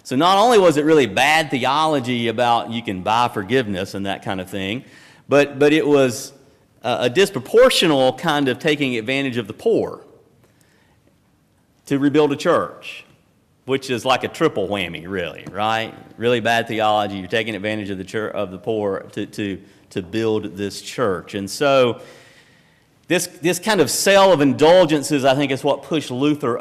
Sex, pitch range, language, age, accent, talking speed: male, 105-150 Hz, English, 40-59, American, 175 wpm